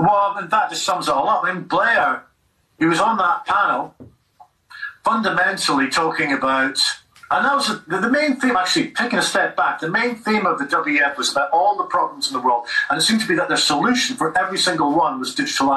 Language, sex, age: English, male, 40-59